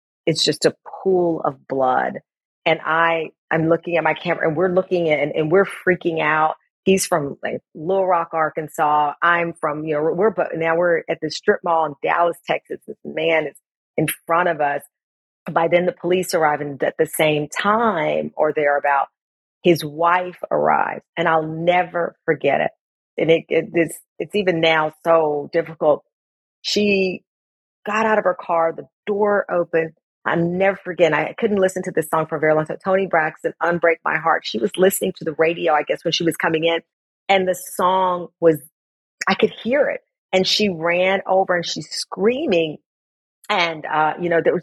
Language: English